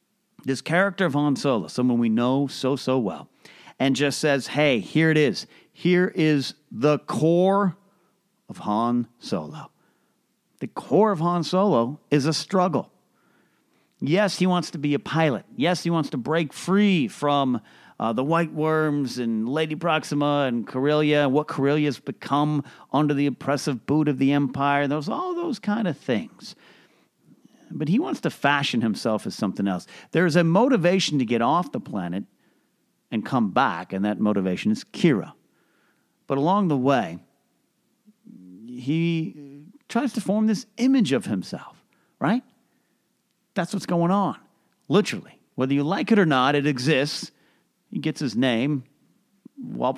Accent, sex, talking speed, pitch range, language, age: American, male, 155 wpm, 135-190 Hz, English, 40-59